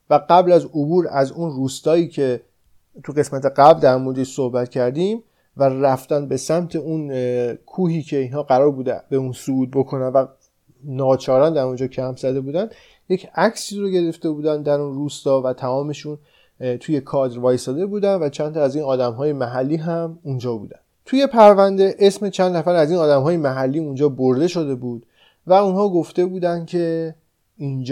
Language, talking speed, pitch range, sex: Persian, 170 wpm, 130-170 Hz, male